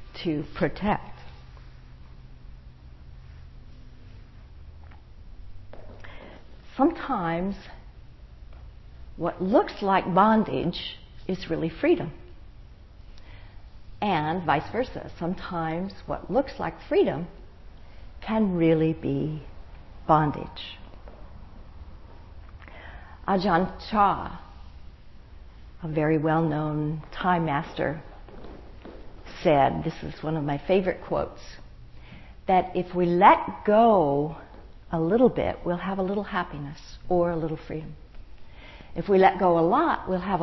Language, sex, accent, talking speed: English, female, American, 90 wpm